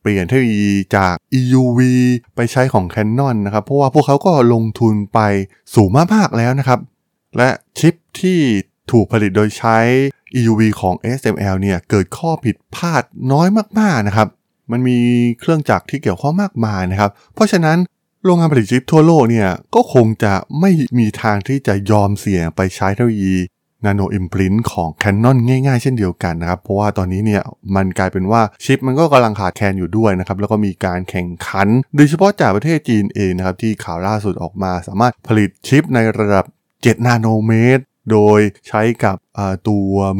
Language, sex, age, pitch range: Thai, male, 20-39, 100-130 Hz